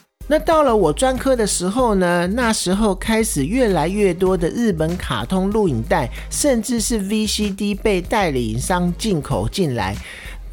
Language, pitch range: Chinese, 150-215 Hz